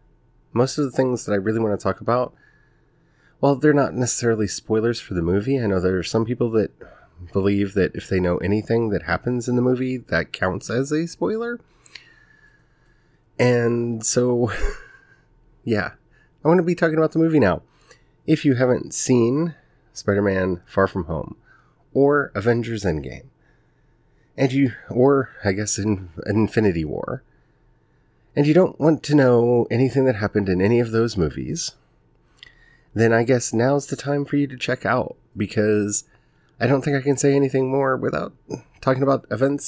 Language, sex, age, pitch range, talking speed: English, male, 30-49, 105-140 Hz, 170 wpm